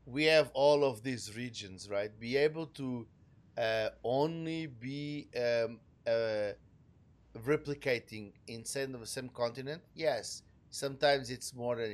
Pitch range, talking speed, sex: 110-135 Hz, 125 wpm, male